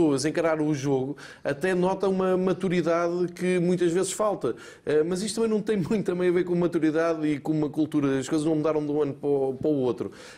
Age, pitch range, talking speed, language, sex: 20-39, 140-180 Hz, 200 wpm, Portuguese, male